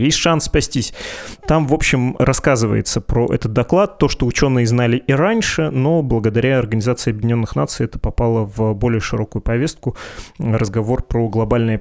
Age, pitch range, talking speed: 20-39, 115-135 Hz, 150 wpm